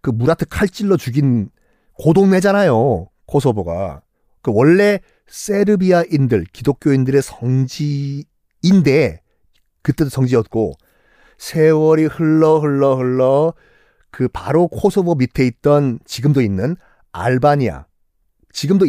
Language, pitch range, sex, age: Korean, 130-190 Hz, male, 40-59